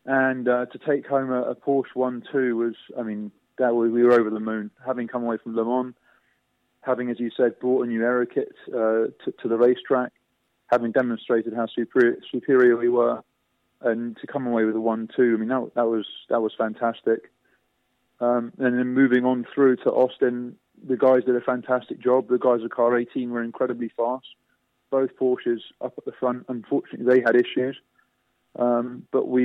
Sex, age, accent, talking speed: male, 20-39, British, 185 wpm